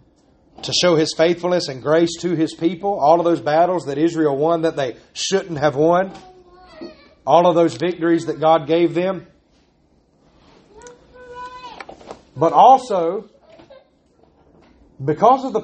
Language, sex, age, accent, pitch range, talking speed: English, male, 30-49, American, 150-215 Hz, 130 wpm